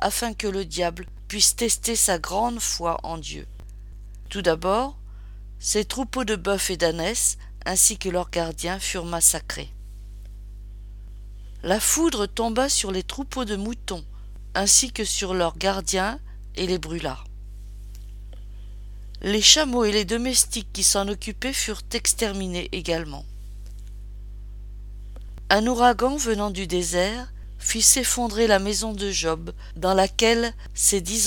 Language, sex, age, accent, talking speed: French, female, 50-69, French, 130 wpm